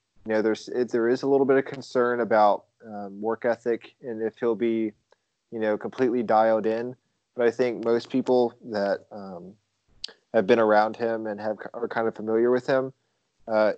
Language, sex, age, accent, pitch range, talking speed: English, male, 20-39, American, 110-120 Hz, 185 wpm